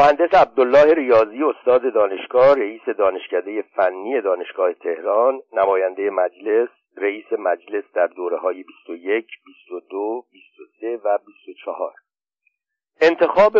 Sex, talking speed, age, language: male, 100 wpm, 60-79, Persian